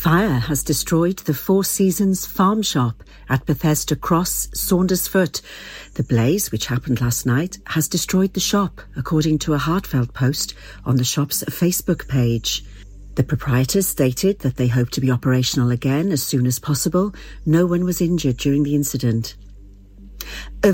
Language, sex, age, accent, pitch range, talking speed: English, female, 50-69, British, 130-185 Hz, 155 wpm